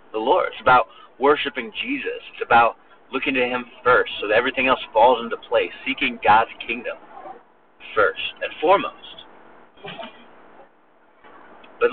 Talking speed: 130 wpm